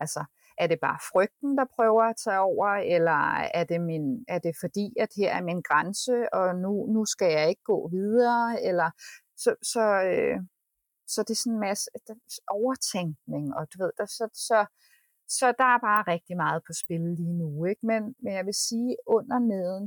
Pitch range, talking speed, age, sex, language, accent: 170-215 Hz, 200 wpm, 30-49, female, Danish, native